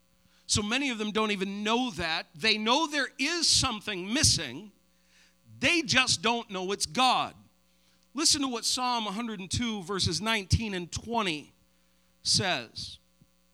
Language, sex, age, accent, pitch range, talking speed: English, male, 50-69, American, 170-265 Hz, 135 wpm